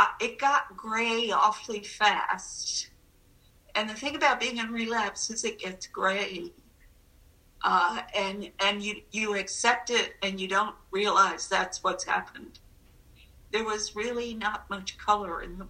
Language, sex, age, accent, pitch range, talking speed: English, female, 50-69, American, 185-235 Hz, 145 wpm